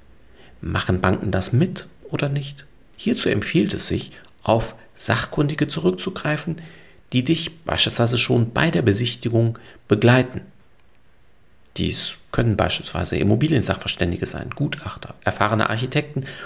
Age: 50-69